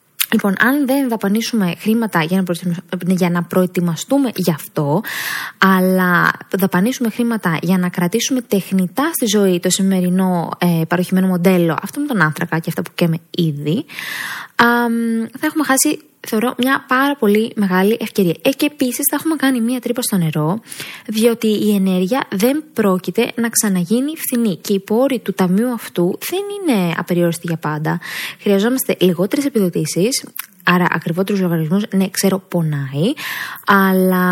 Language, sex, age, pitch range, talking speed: Greek, female, 20-39, 180-230 Hz, 140 wpm